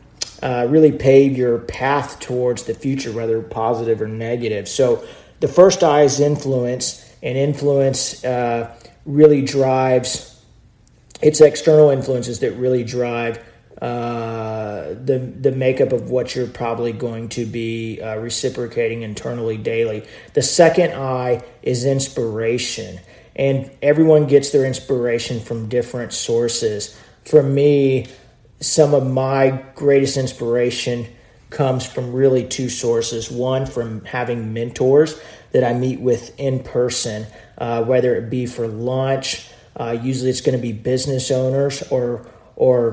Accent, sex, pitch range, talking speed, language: American, male, 120-135 Hz, 135 wpm, English